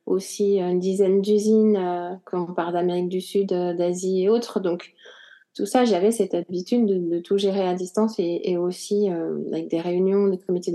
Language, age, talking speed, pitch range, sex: French, 30-49, 200 wpm, 185-240 Hz, female